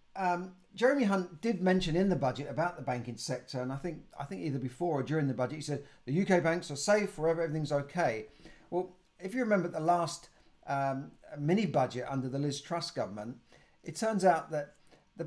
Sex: male